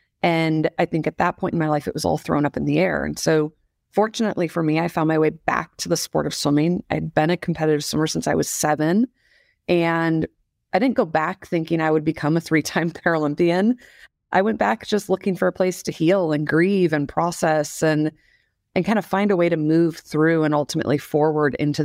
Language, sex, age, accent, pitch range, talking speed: English, female, 30-49, American, 150-175 Hz, 220 wpm